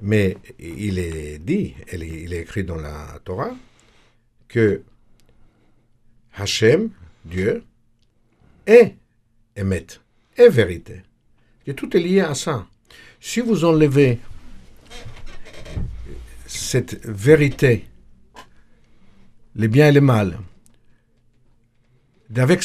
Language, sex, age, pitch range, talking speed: French, male, 60-79, 110-125 Hz, 90 wpm